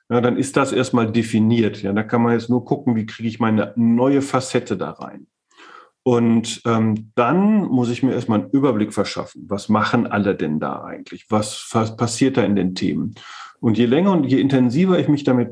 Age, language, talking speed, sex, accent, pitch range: 40-59, German, 205 wpm, male, German, 110-130 Hz